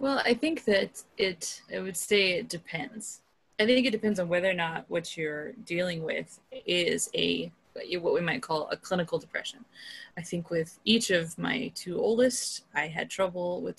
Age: 20-39